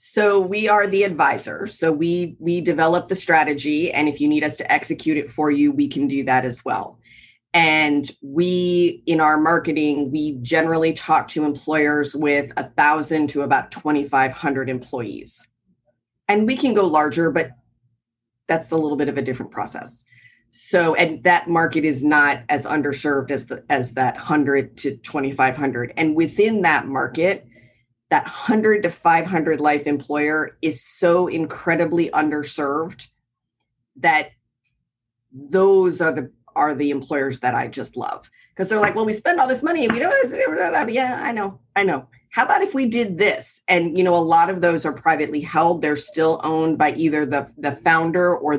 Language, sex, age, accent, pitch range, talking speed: English, female, 30-49, American, 145-175 Hz, 180 wpm